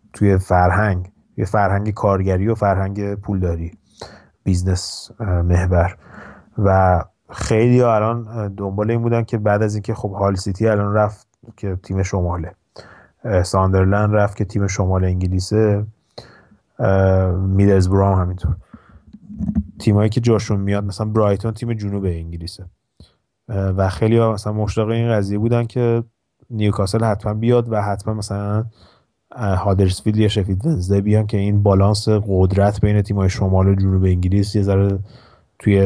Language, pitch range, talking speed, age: Persian, 95-110 Hz, 130 wpm, 30-49